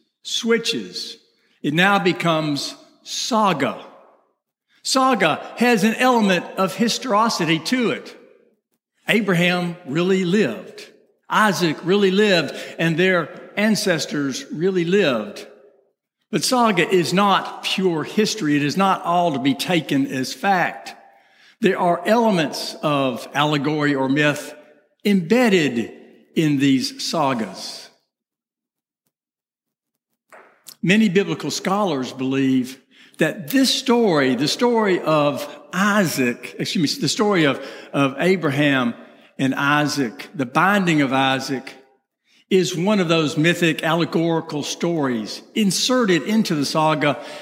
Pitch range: 145-215 Hz